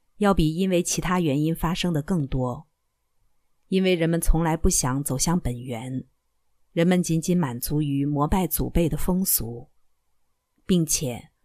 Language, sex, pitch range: Chinese, female, 145-185 Hz